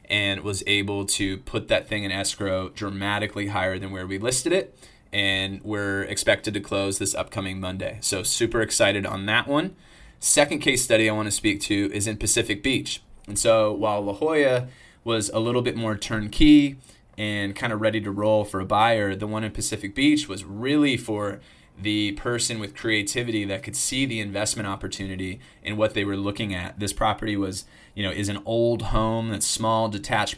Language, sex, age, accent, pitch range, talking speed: English, male, 20-39, American, 100-115 Hz, 195 wpm